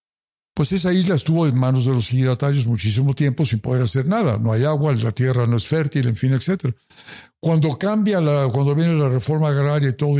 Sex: male